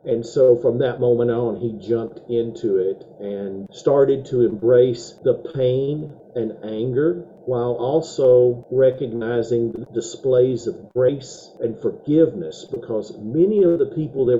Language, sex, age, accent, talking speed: English, male, 50-69, American, 135 wpm